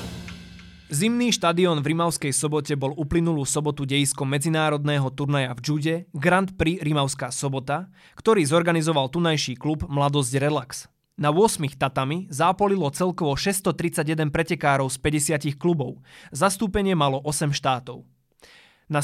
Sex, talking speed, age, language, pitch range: male, 120 wpm, 20-39, Slovak, 135-170 Hz